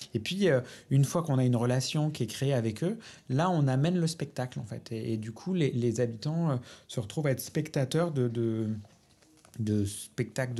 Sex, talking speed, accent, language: male, 205 wpm, French, French